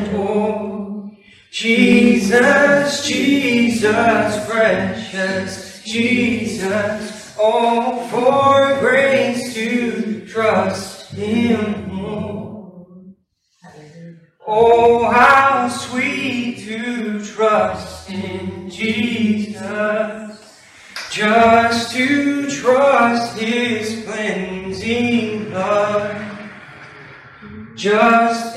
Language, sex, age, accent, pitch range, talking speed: English, male, 20-39, American, 210-240 Hz, 55 wpm